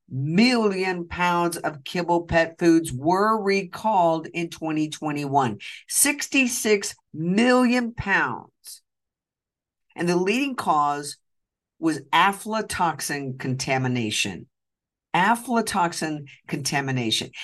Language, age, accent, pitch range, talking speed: English, 50-69, American, 145-225 Hz, 75 wpm